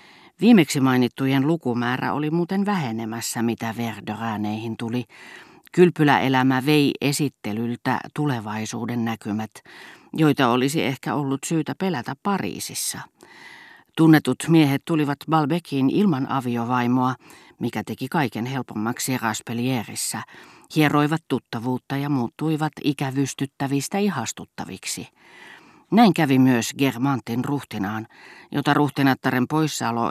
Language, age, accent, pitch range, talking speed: Finnish, 40-59, native, 115-145 Hz, 90 wpm